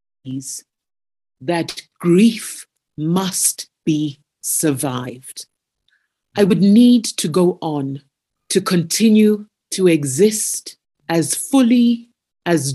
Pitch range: 140-190 Hz